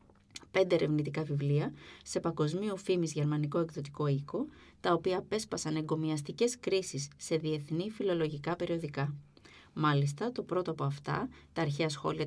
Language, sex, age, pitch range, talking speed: Greek, female, 20-39, 150-175 Hz, 125 wpm